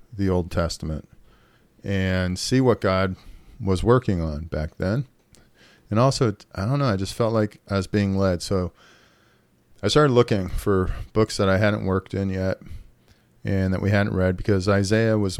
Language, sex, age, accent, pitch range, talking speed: English, male, 40-59, American, 90-110 Hz, 175 wpm